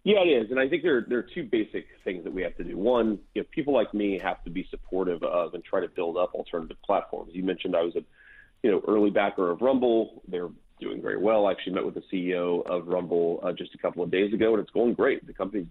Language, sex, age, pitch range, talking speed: English, male, 30-49, 95-120 Hz, 270 wpm